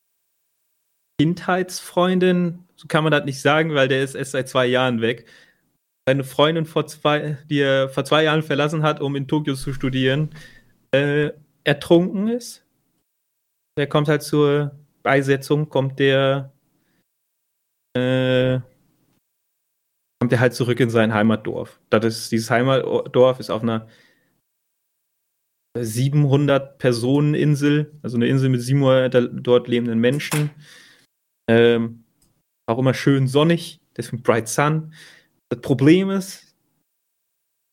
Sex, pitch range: male, 130-155 Hz